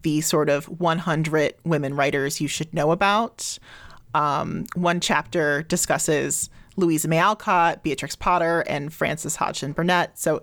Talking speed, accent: 140 wpm, American